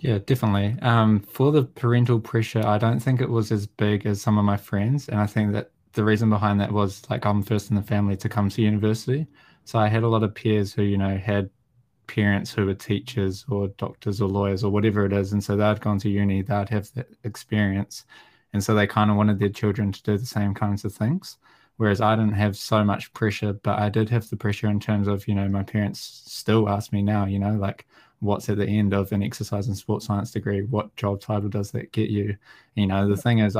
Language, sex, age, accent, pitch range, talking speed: English, male, 20-39, Australian, 100-110 Hz, 245 wpm